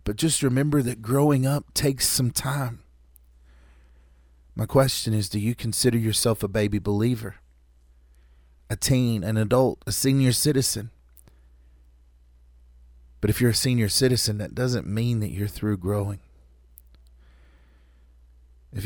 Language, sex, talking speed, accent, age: English, male, 125 wpm, American, 30-49